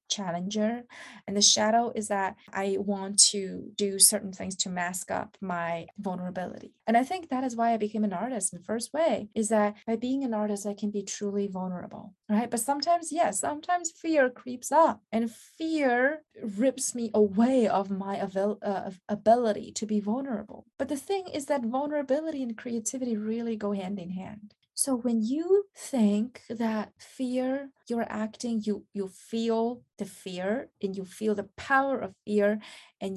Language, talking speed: English, 170 wpm